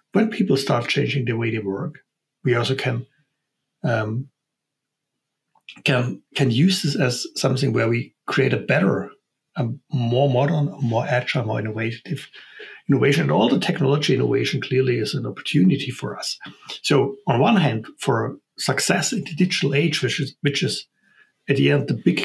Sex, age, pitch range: male, 60-79, 120-145 Hz